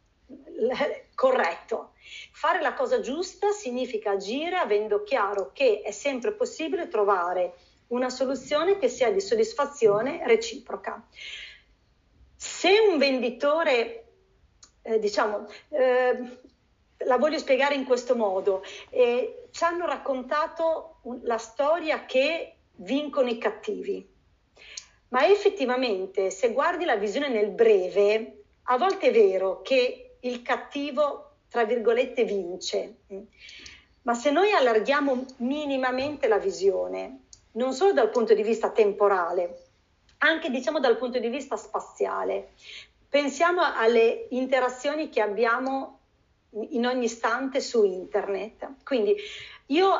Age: 40-59